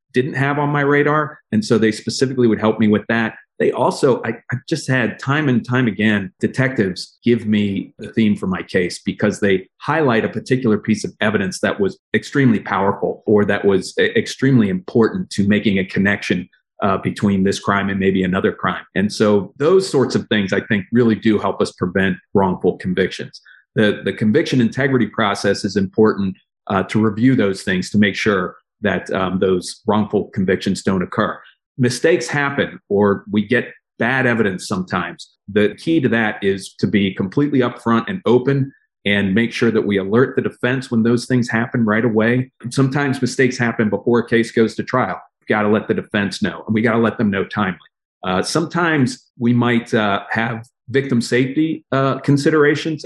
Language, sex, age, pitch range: English, male, 40-59, 105-130 Hz